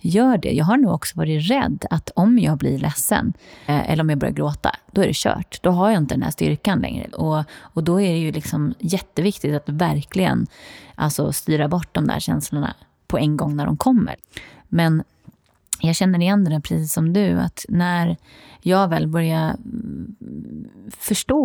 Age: 30-49